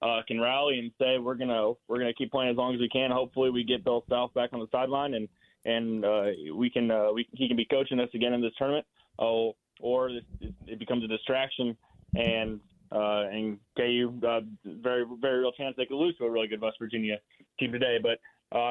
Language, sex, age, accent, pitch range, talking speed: English, male, 20-39, American, 115-130 Hz, 225 wpm